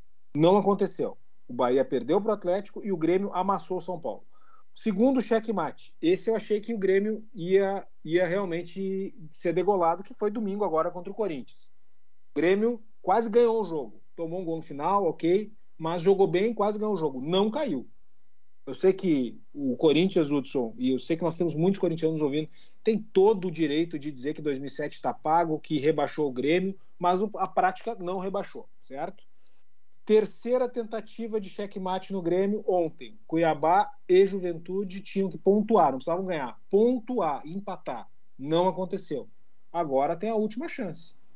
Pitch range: 160-220 Hz